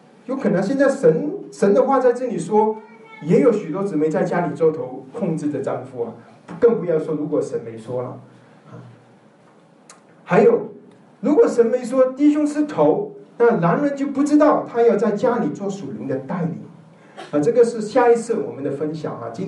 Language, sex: Chinese, male